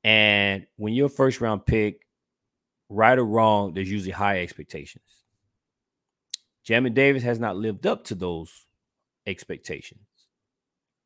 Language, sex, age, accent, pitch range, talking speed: English, male, 30-49, American, 105-140 Hz, 120 wpm